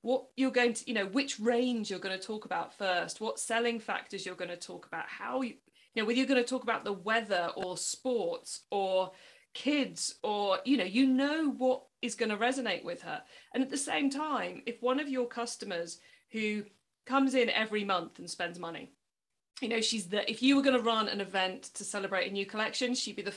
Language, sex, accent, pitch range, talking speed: English, female, British, 200-260 Hz, 225 wpm